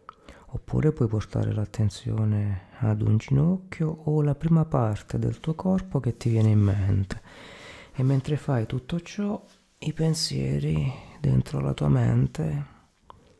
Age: 30-49